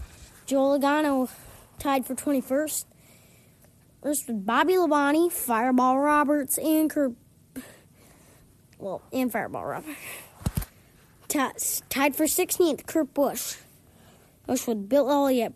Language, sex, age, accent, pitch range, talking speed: English, female, 20-39, American, 240-290 Hz, 100 wpm